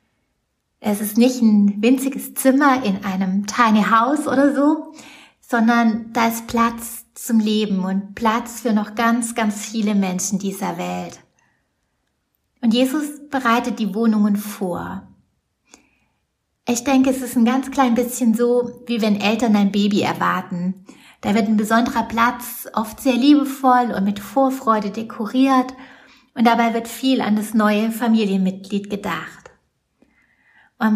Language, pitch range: German, 205-245 Hz